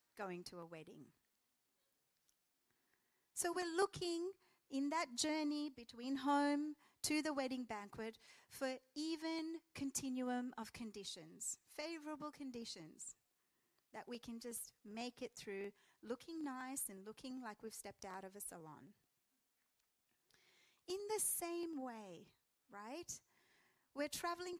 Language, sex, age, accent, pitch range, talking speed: English, female, 40-59, Australian, 230-300 Hz, 115 wpm